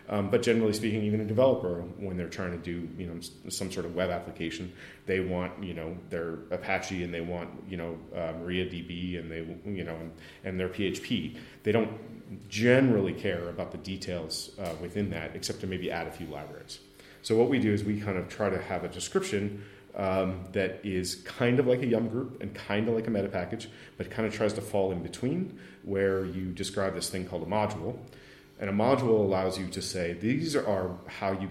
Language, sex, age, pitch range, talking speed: English, male, 30-49, 90-105 Hz, 215 wpm